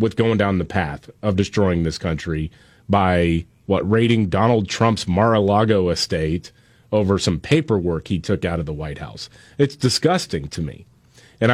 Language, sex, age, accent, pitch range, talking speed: English, male, 30-49, American, 100-125 Hz, 160 wpm